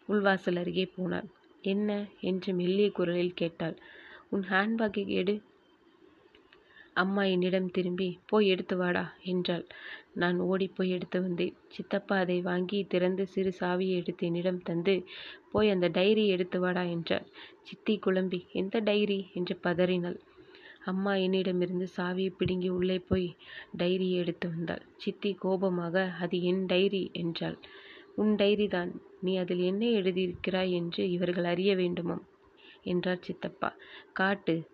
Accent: native